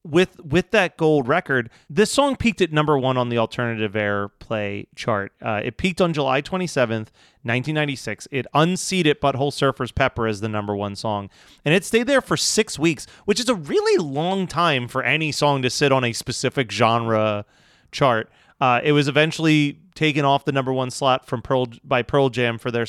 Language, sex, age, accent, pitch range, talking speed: English, male, 30-49, American, 125-165 Hz, 190 wpm